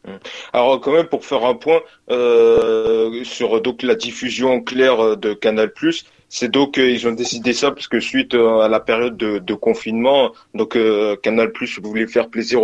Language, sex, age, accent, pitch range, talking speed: French, male, 20-39, French, 115-155 Hz, 195 wpm